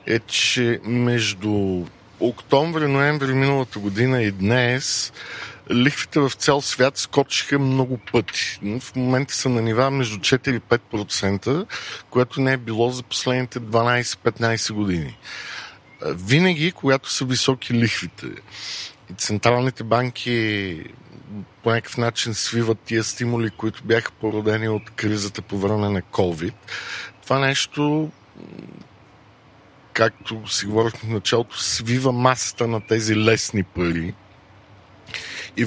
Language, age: Bulgarian, 50-69